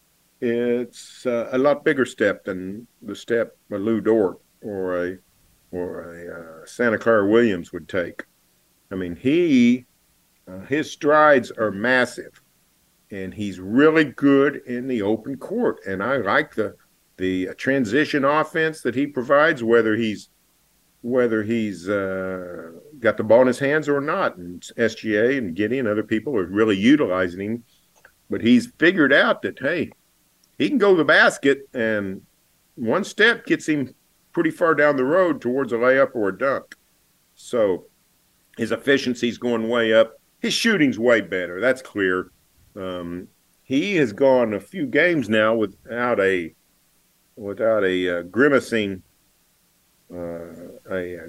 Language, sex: English, male